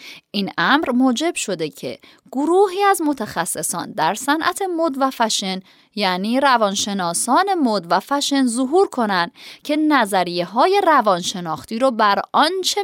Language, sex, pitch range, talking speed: Persian, female, 190-285 Hz, 130 wpm